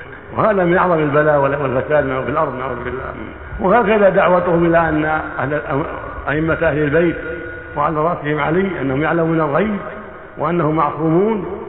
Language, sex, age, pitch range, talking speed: Arabic, male, 60-79, 145-175 Hz, 130 wpm